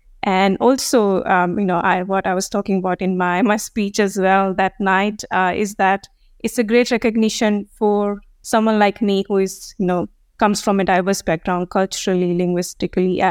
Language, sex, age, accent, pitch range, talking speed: English, female, 20-39, Indian, 185-210 Hz, 180 wpm